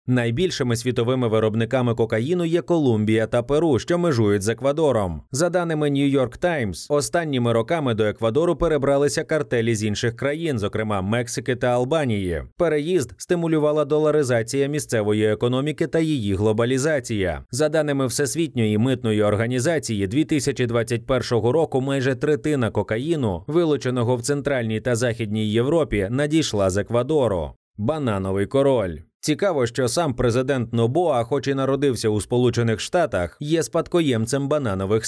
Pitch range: 115-150 Hz